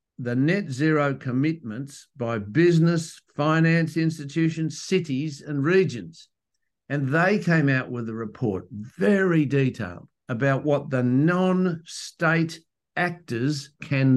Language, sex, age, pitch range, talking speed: English, male, 60-79, 130-165 Hz, 110 wpm